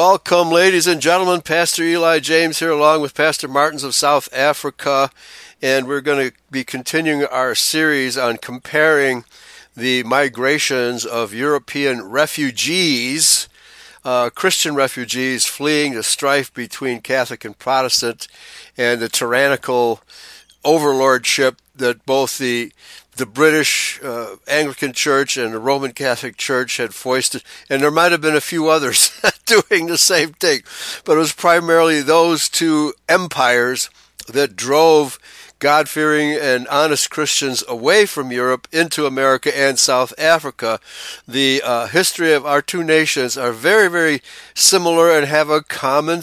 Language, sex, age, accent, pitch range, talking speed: English, male, 60-79, American, 130-155 Hz, 140 wpm